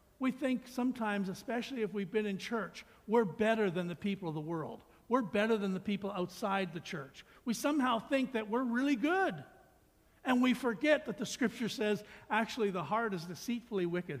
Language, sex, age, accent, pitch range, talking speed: English, male, 60-79, American, 165-220 Hz, 190 wpm